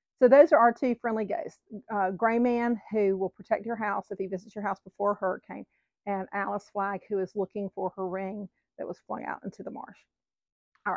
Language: English